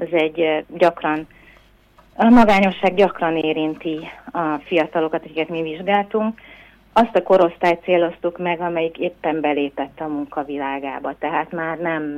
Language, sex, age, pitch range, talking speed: Hungarian, female, 30-49, 150-175 Hz, 125 wpm